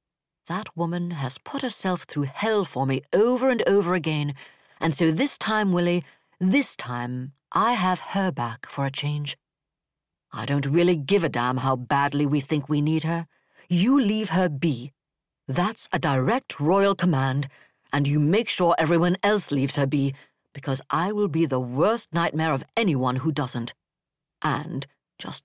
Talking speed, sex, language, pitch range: 165 wpm, female, English, 140-190 Hz